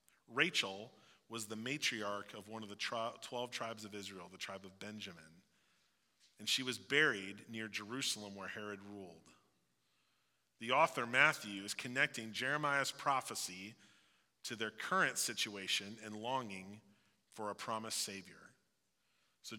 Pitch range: 105-165 Hz